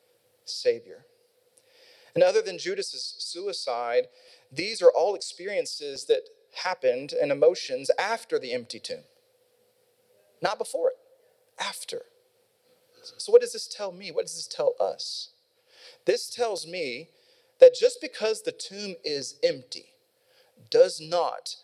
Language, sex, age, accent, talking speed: English, male, 30-49, American, 125 wpm